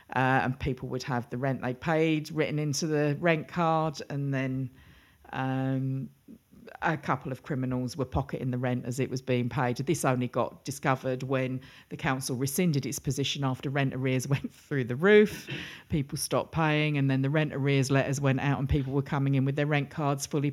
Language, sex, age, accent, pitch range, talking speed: English, female, 40-59, British, 130-155 Hz, 200 wpm